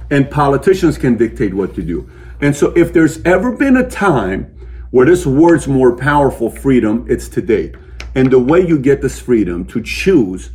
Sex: male